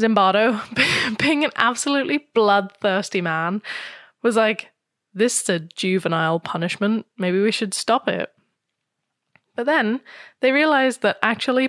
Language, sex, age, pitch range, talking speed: English, female, 10-29, 180-220 Hz, 125 wpm